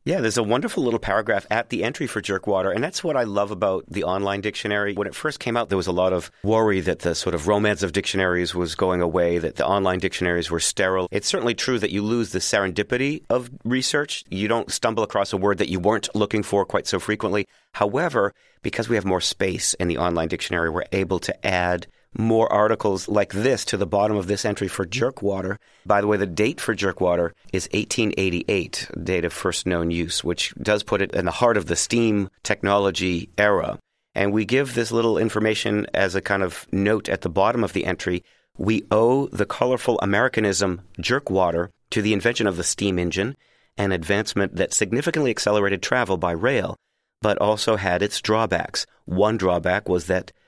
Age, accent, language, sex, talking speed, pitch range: 40-59, American, English, male, 200 wpm, 90-105 Hz